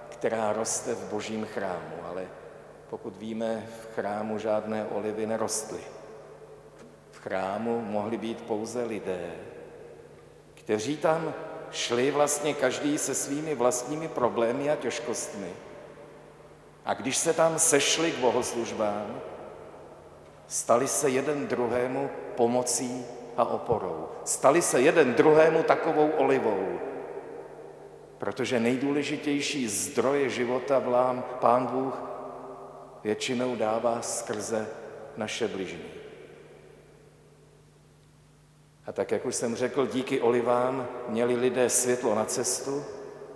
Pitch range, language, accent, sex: 115-150 Hz, Czech, native, male